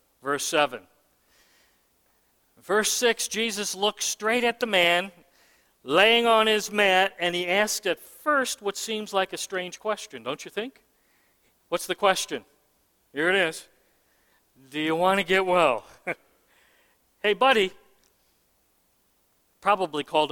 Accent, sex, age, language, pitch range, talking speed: American, male, 50-69, English, 180-235 Hz, 130 wpm